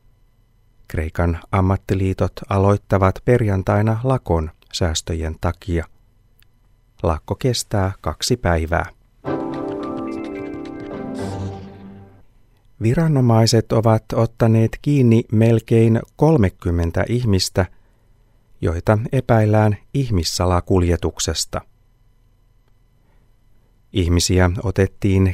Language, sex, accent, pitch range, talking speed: Finnish, male, native, 95-115 Hz, 55 wpm